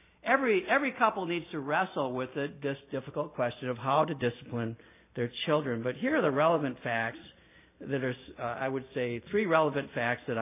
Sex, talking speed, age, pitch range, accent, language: male, 190 wpm, 60-79, 120-160 Hz, American, English